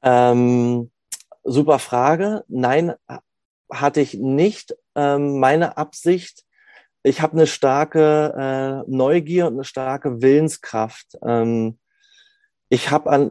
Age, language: 30-49, German